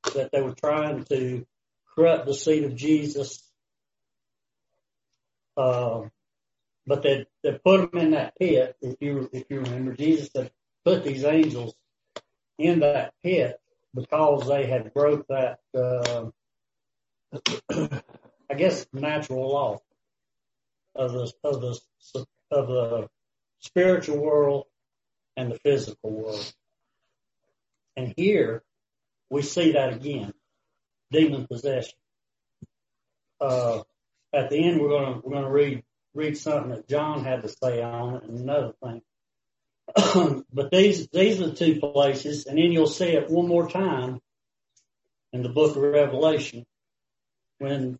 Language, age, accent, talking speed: English, 60-79, American, 135 wpm